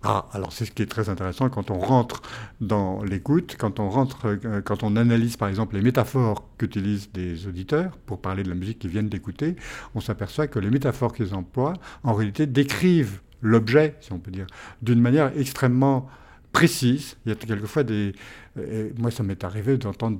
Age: 70-89